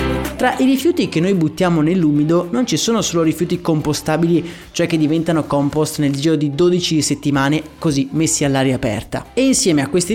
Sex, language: male, Italian